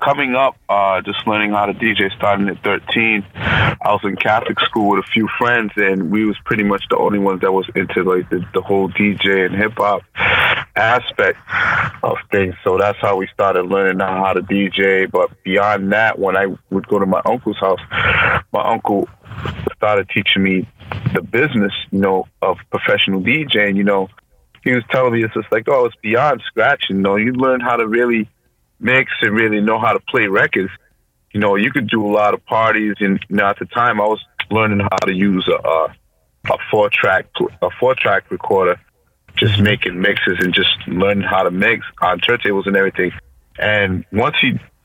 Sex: male